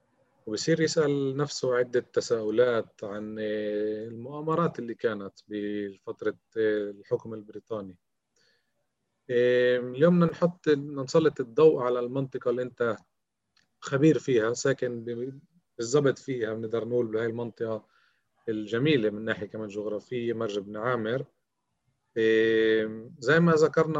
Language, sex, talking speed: Arabic, male, 105 wpm